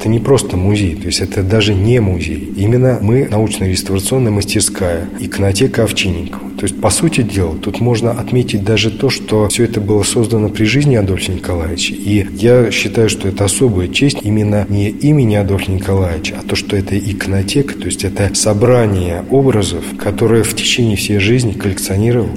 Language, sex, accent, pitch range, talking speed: Russian, male, native, 100-120 Hz, 170 wpm